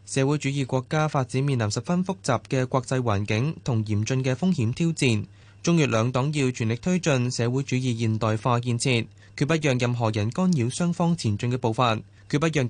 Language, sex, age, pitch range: Chinese, male, 20-39, 110-145 Hz